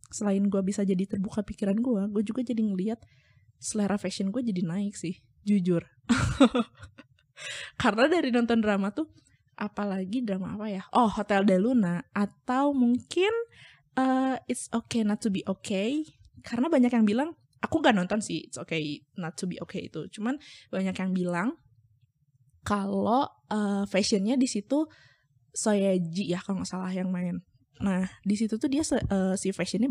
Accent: native